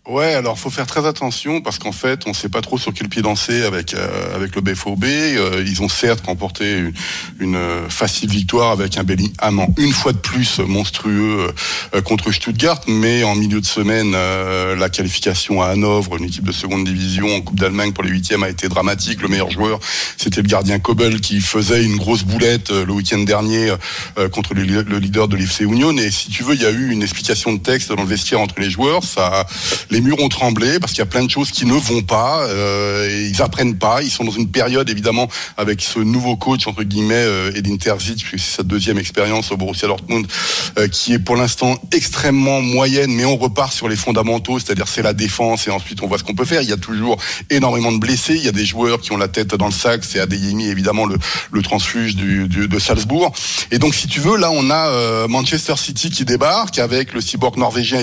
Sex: male